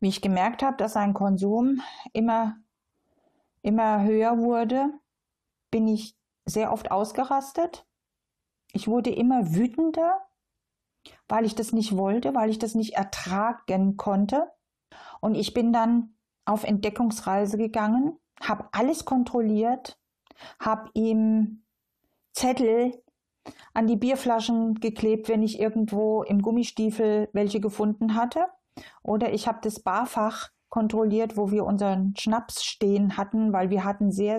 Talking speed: 125 wpm